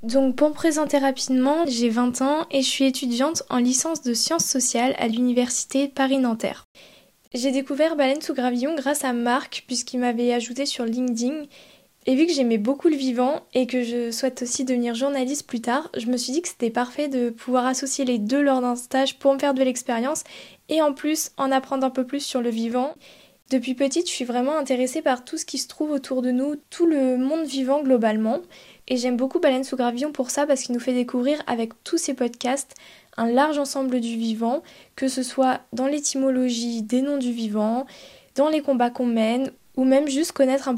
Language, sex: French, female